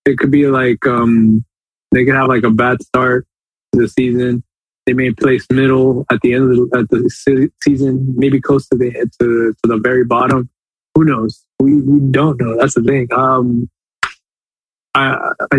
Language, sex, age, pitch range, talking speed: English, male, 20-39, 115-135 Hz, 180 wpm